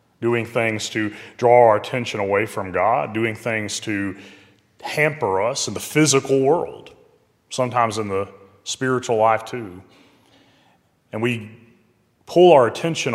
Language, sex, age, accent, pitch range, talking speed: English, male, 30-49, American, 95-115 Hz, 130 wpm